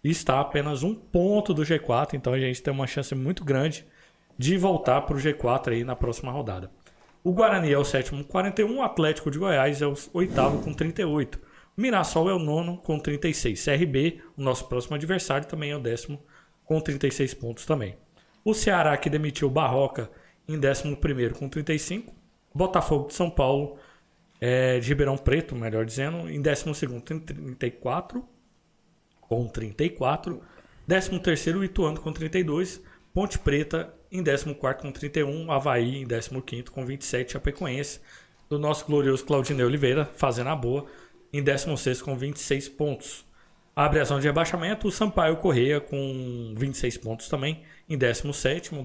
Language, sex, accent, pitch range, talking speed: Portuguese, male, Brazilian, 130-160 Hz, 160 wpm